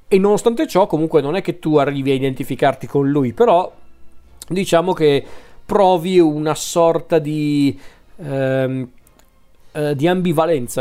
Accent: native